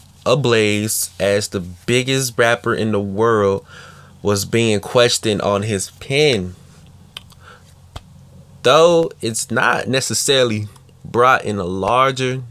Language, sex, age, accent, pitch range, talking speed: English, male, 20-39, American, 95-115 Hz, 105 wpm